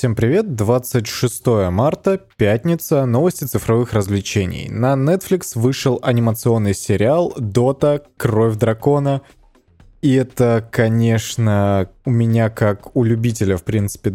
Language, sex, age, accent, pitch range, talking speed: Russian, male, 20-39, native, 110-135 Hz, 110 wpm